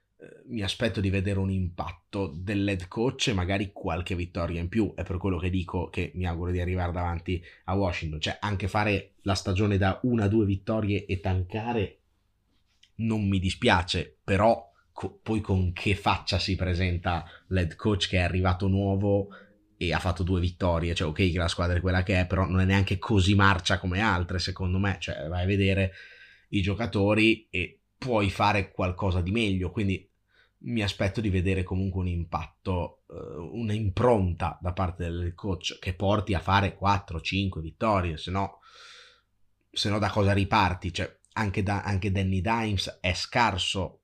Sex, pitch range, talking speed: male, 90-105 Hz, 175 wpm